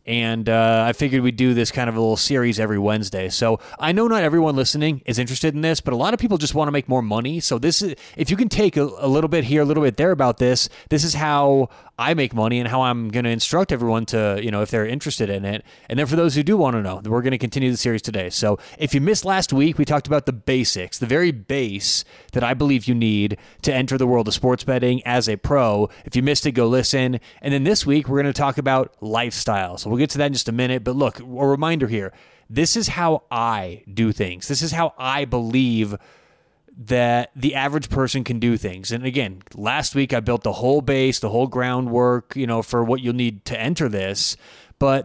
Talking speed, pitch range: 250 wpm, 115-145 Hz